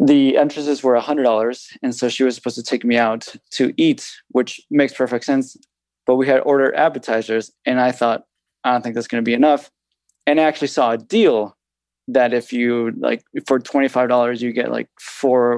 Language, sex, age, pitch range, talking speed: English, male, 20-39, 115-130 Hz, 195 wpm